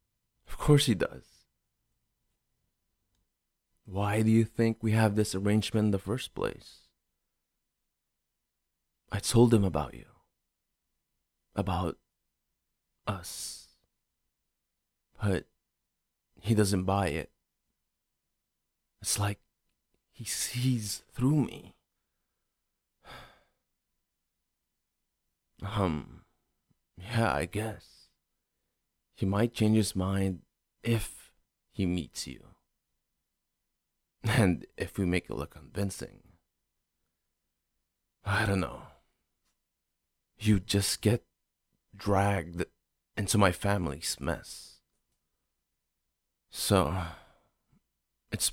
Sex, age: male, 30-49